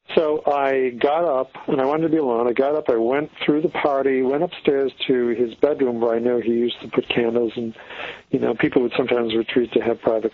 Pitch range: 120-140 Hz